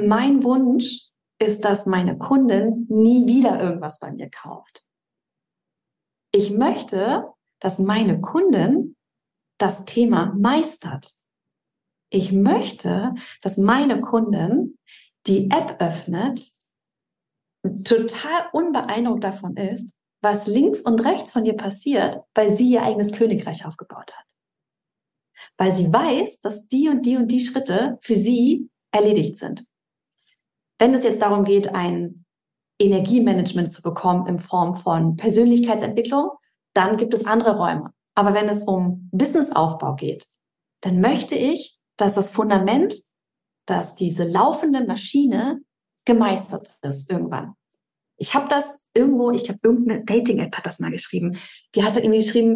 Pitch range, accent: 195-245 Hz, German